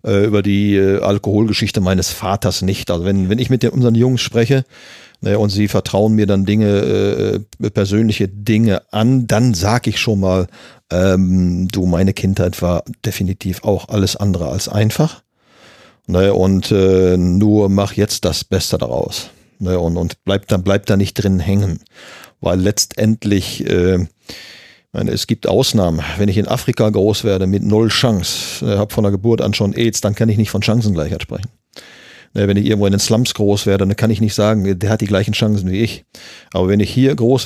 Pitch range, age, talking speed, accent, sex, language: 100-115 Hz, 50-69, 190 wpm, German, male, German